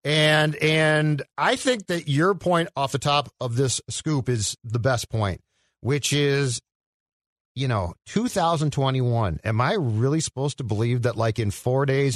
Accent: American